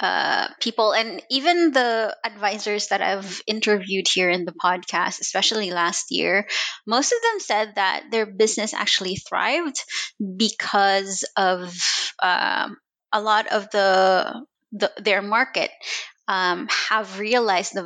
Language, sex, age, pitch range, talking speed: English, female, 20-39, 195-240 Hz, 130 wpm